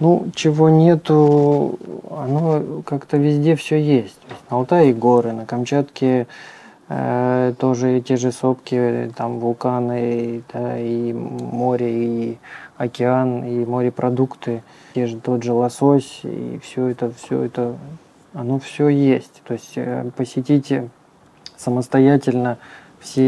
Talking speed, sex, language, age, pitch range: 115 wpm, male, Russian, 20-39, 120-140 Hz